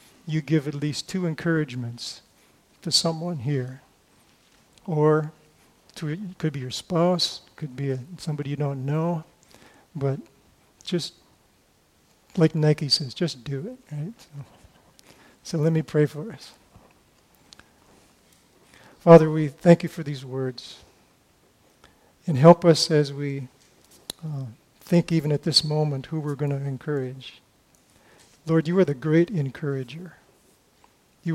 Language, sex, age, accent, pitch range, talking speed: English, male, 50-69, American, 140-165 Hz, 135 wpm